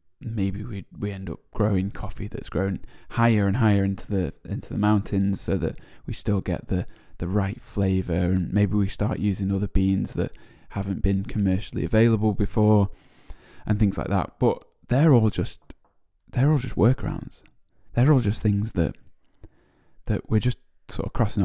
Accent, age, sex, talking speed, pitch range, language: British, 10-29, male, 175 wpm, 95-115 Hz, English